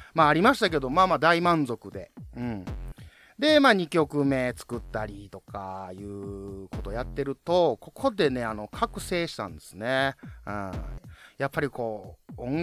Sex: male